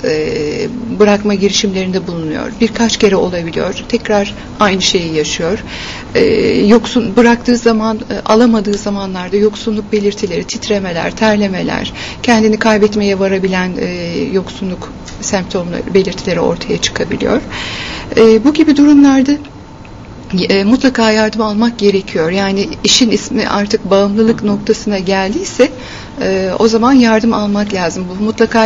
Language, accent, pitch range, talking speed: Turkish, native, 200-230 Hz, 100 wpm